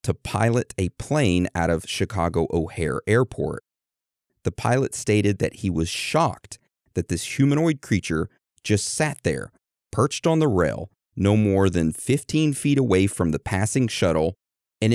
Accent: American